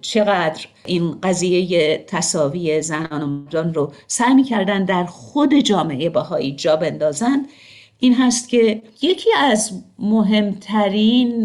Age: 50-69